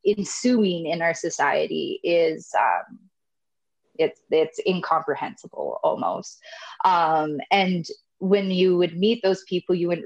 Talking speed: 120 wpm